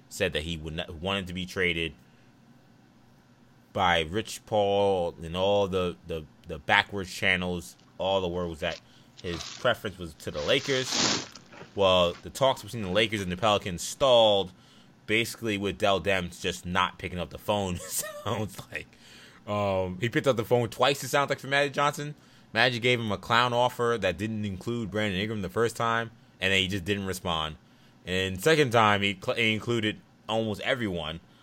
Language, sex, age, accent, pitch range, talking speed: English, male, 20-39, American, 90-115 Hz, 180 wpm